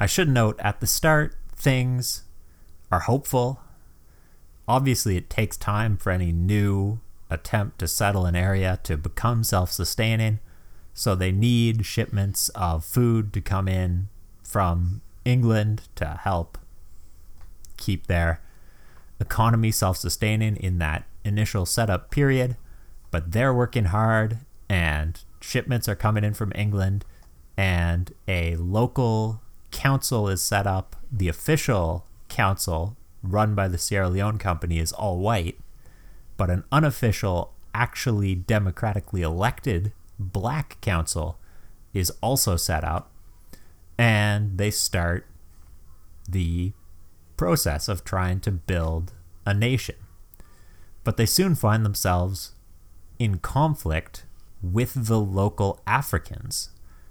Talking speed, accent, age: 115 wpm, American, 30-49